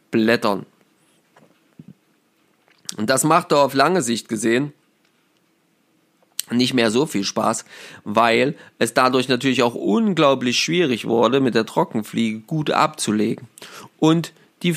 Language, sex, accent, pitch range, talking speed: German, male, German, 110-150 Hz, 115 wpm